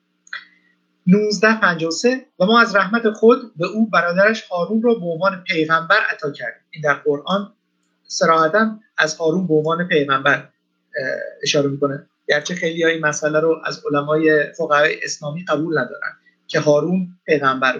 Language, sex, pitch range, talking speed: English, male, 145-195 Hz, 140 wpm